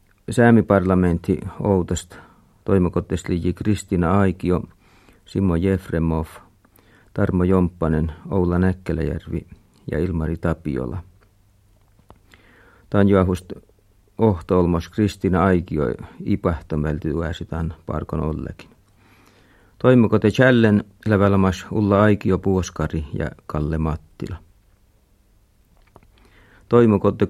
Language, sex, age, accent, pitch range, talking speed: Finnish, male, 50-69, native, 85-105 Hz, 70 wpm